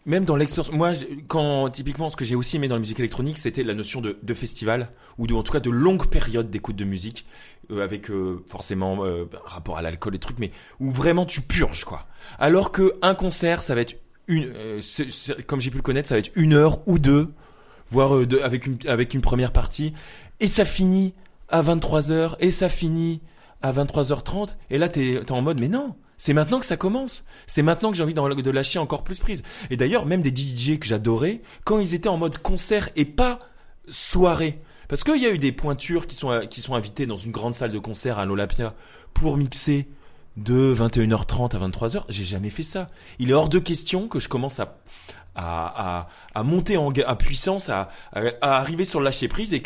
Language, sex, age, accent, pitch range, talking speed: French, male, 20-39, French, 115-165 Hz, 225 wpm